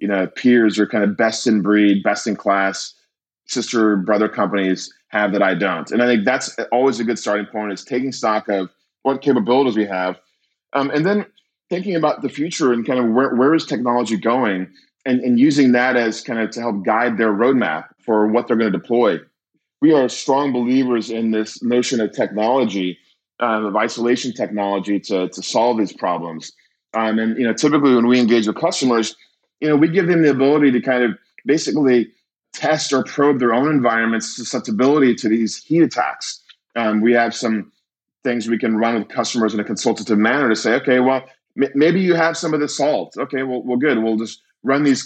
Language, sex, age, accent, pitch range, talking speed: English, male, 20-39, American, 110-130 Hz, 200 wpm